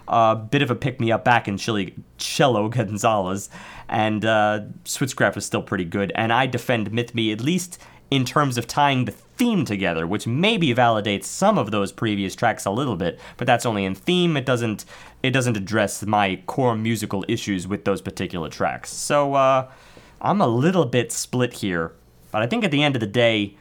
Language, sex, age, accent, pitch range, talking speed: English, male, 30-49, American, 100-125 Hz, 200 wpm